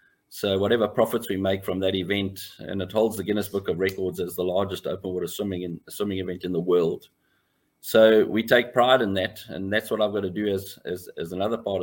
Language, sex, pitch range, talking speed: English, male, 95-110 Hz, 235 wpm